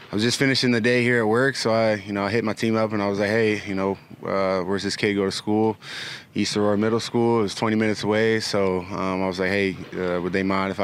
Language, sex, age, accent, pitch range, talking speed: English, male, 20-39, American, 90-105 Hz, 290 wpm